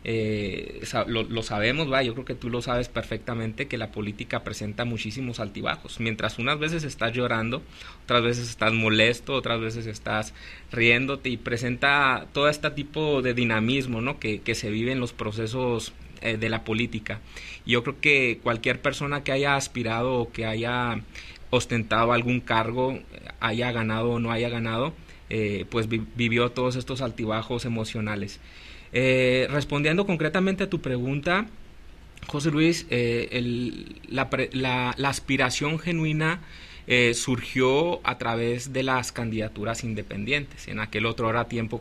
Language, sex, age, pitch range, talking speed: Spanish, male, 30-49, 110-130 Hz, 150 wpm